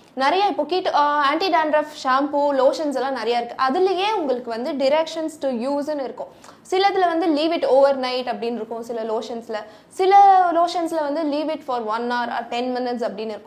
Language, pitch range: Tamil, 240-315 Hz